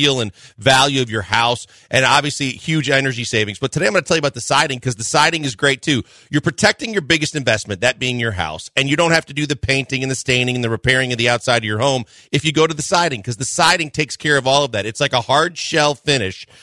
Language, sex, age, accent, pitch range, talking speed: English, male, 40-59, American, 130-155 Hz, 275 wpm